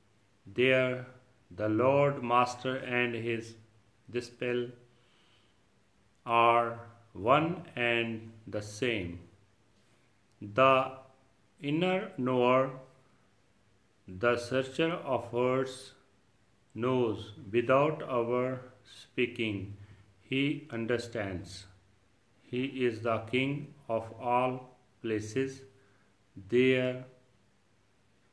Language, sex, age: Punjabi, male, 40-59